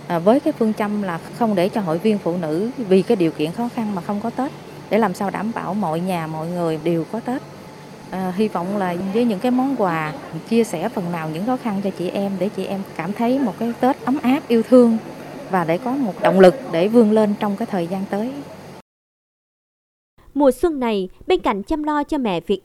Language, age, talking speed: Vietnamese, 20-39, 235 wpm